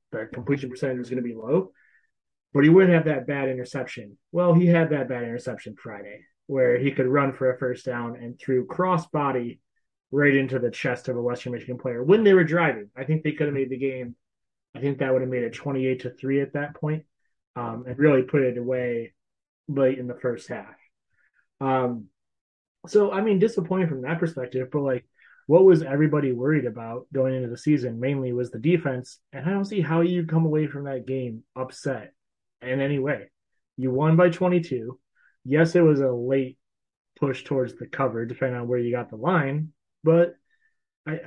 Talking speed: 200 wpm